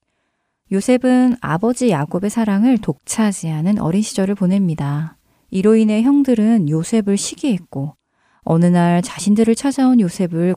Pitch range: 160-220 Hz